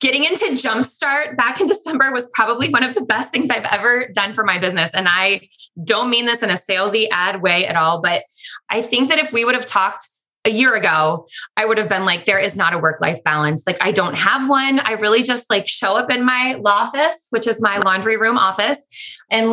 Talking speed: 235 wpm